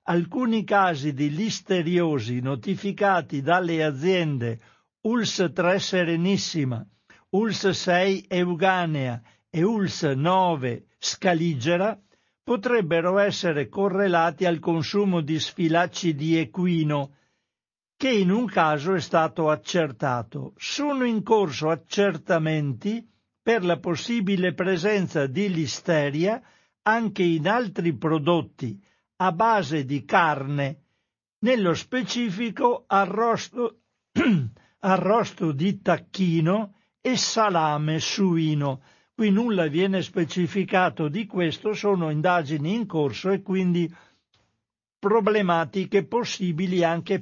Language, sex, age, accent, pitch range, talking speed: Italian, male, 60-79, native, 150-200 Hz, 95 wpm